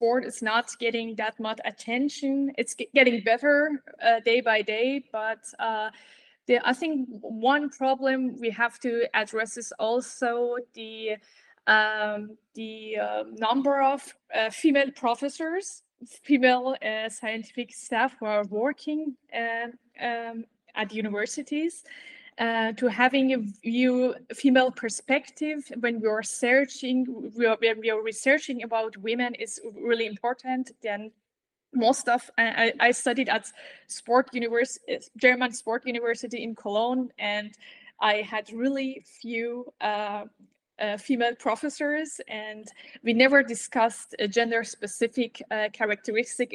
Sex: female